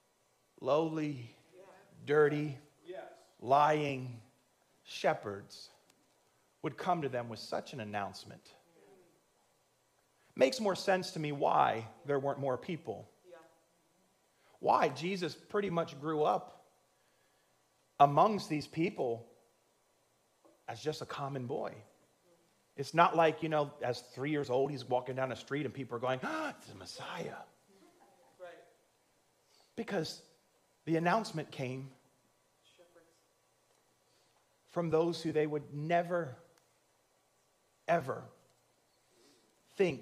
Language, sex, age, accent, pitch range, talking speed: English, male, 40-59, American, 135-185 Hz, 105 wpm